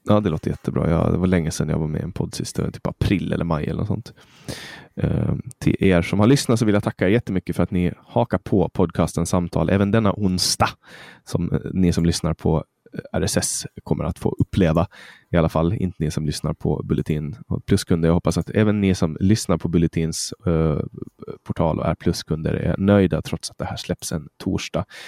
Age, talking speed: 20-39, 210 wpm